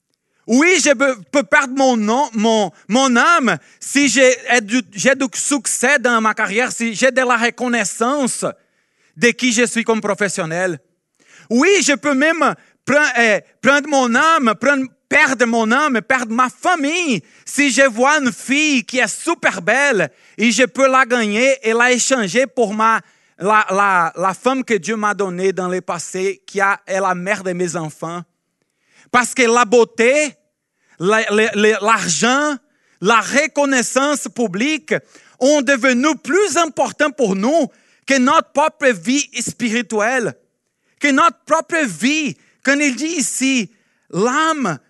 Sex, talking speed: male, 145 wpm